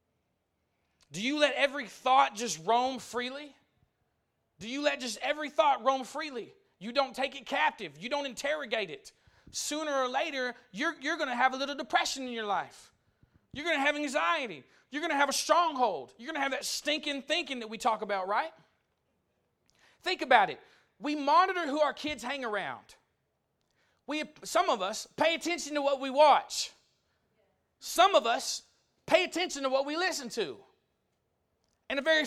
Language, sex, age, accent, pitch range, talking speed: English, male, 40-59, American, 205-300 Hz, 175 wpm